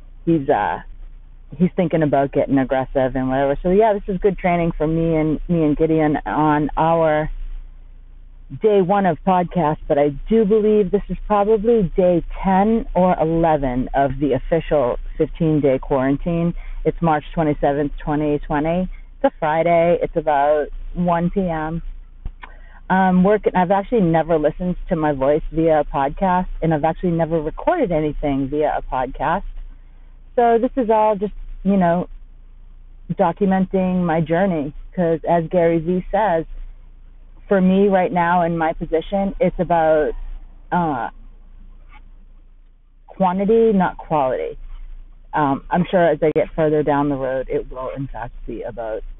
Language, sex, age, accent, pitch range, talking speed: English, female, 40-59, American, 150-185 Hz, 145 wpm